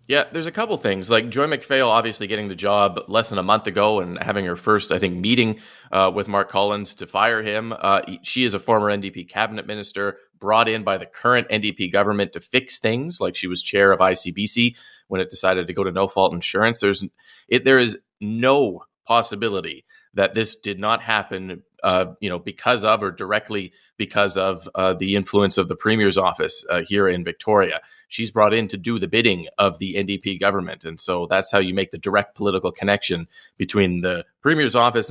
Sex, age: male, 30-49